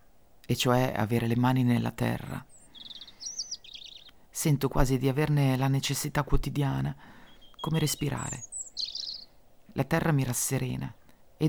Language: Italian